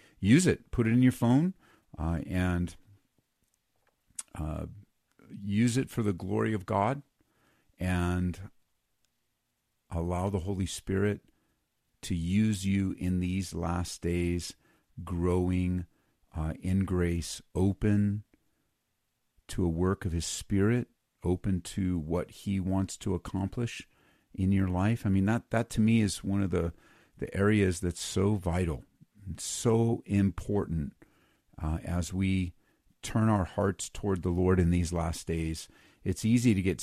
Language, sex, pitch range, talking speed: English, male, 90-100 Hz, 135 wpm